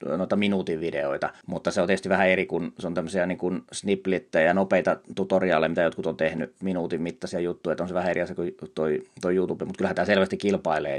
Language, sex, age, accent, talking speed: Finnish, male, 30-49, native, 220 wpm